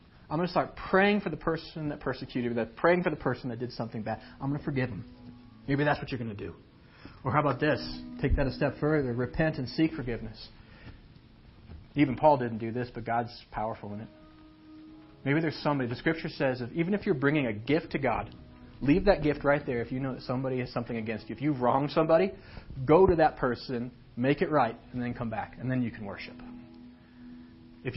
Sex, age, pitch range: male, 40-59, 115-145 Hz